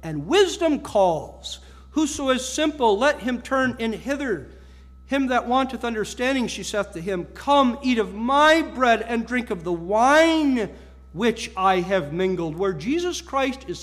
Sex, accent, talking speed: male, American, 160 wpm